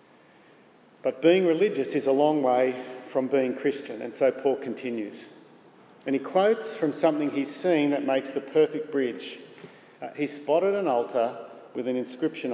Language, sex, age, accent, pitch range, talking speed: English, male, 40-59, Australian, 135-170 Hz, 165 wpm